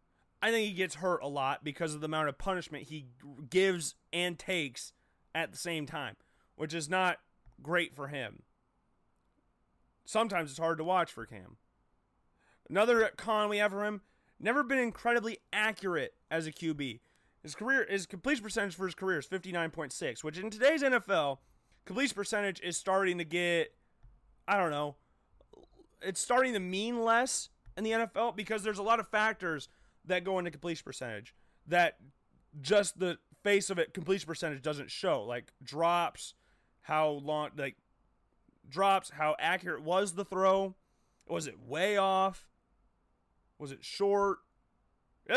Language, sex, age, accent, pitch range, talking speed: English, male, 30-49, American, 155-215 Hz, 155 wpm